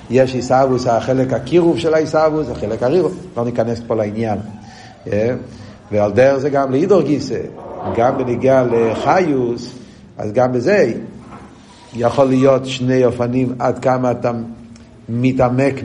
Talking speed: 120 wpm